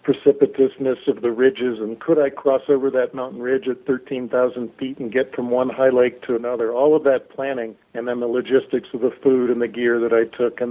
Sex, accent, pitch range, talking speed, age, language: male, American, 120-140 Hz, 230 wpm, 50-69, English